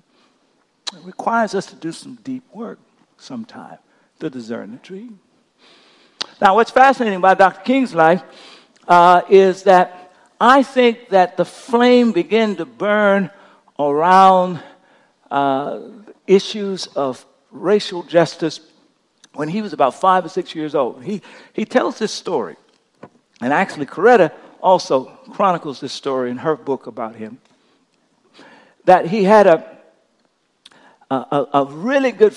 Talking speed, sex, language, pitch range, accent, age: 135 wpm, male, English, 165-240 Hz, American, 60-79